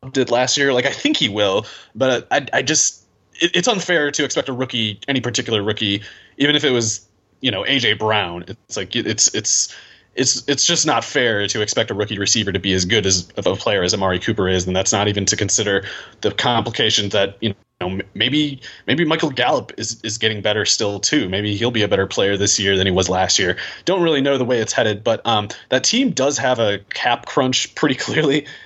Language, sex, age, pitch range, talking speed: English, male, 30-49, 100-130 Hz, 225 wpm